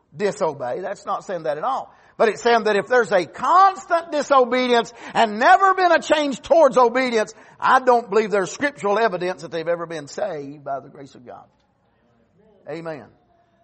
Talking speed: 175 wpm